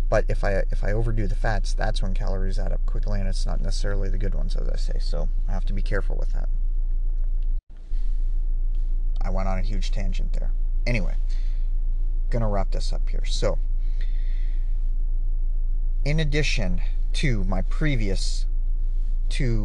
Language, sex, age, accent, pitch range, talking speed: English, male, 30-49, American, 90-105 Hz, 160 wpm